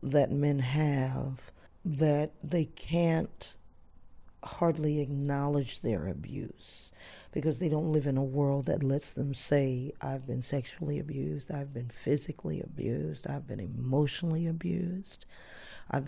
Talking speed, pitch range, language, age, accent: 125 wpm, 140-160 Hz, English, 50-69, American